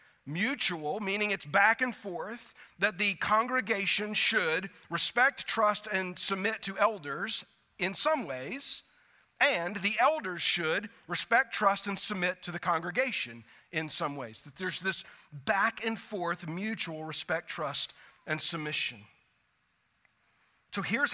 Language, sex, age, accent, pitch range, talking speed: English, male, 40-59, American, 165-220 Hz, 130 wpm